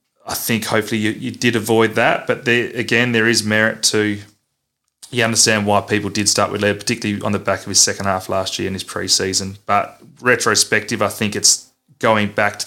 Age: 30-49